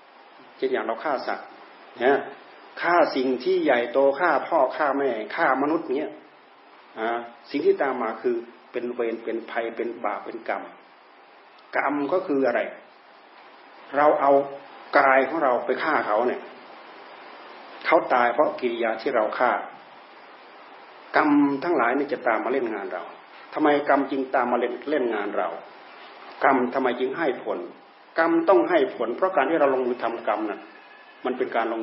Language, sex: Thai, male